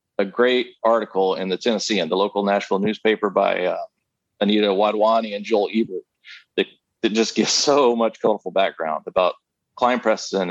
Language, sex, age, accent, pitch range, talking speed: English, male, 40-59, American, 100-115 Hz, 165 wpm